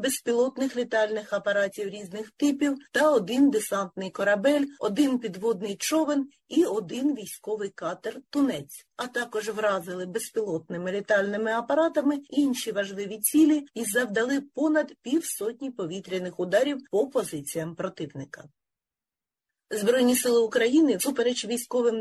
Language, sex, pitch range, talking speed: Ukrainian, female, 200-280 Hz, 105 wpm